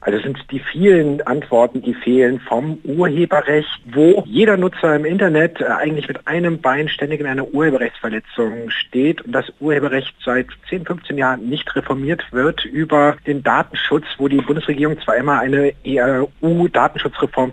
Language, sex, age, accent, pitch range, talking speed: German, male, 50-69, German, 120-155 Hz, 145 wpm